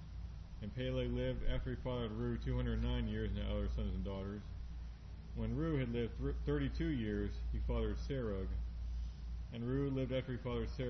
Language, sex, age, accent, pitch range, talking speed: English, male, 40-59, American, 90-125 Hz, 170 wpm